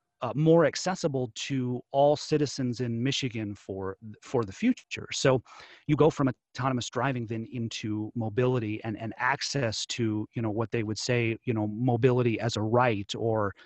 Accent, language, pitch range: American, English, 115-150 Hz